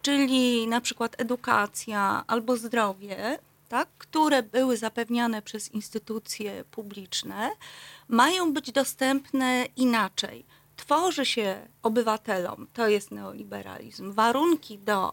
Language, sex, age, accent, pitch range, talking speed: Polish, female, 40-59, native, 215-280 Hz, 95 wpm